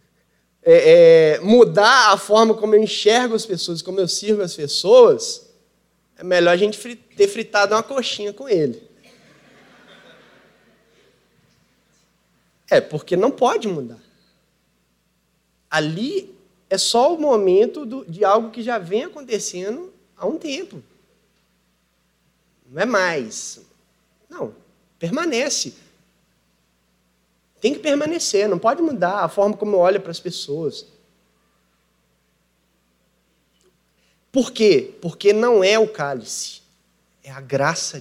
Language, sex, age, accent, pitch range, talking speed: Portuguese, male, 20-39, Brazilian, 175-275 Hz, 120 wpm